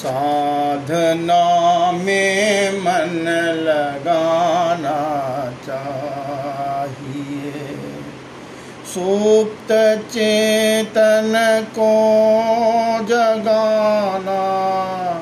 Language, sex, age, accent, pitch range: Hindi, male, 50-69, native, 160-230 Hz